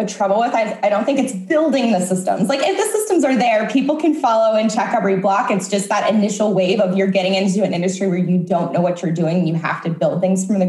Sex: female